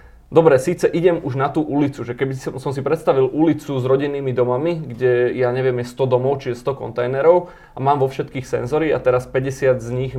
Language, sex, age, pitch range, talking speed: Slovak, male, 20-39, 125-150 Hz, 210 wpm